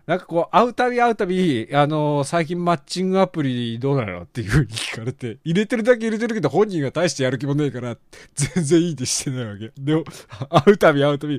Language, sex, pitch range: Japanese, male, 135-220 Hz